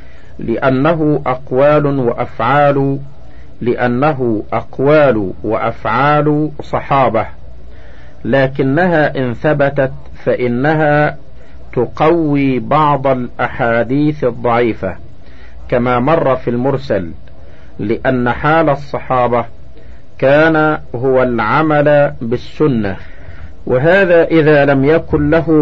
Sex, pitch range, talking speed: male, 110-150 Hz, 75 wpm